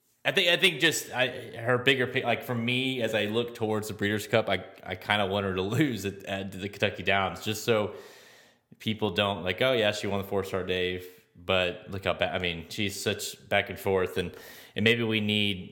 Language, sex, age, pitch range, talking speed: English, male, 20-39, 90-110 Hz, 230 wpm